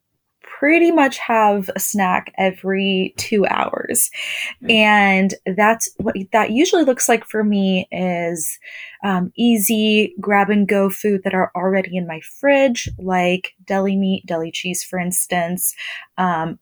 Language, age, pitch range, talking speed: English, 20-39, 185-225 Hz, 135 wpm